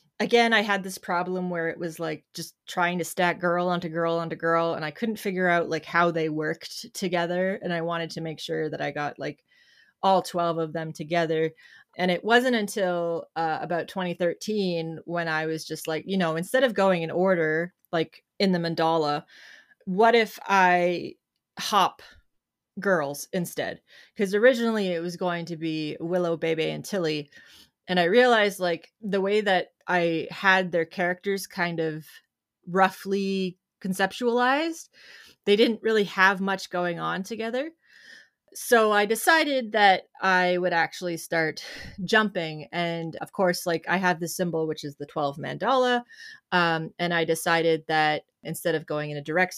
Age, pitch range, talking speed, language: 20-39, 165-195 Hz, 170 wpm, English